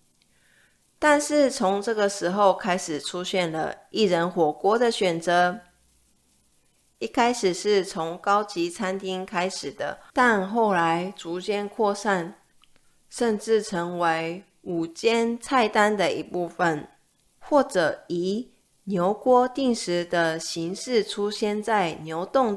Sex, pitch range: female, 175-230 Hz